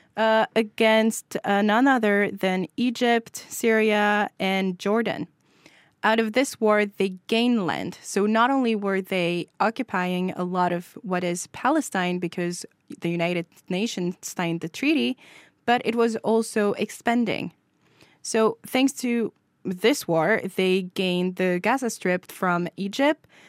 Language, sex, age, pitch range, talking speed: English, female, 20-39, 180-225 Hz, 135 wpm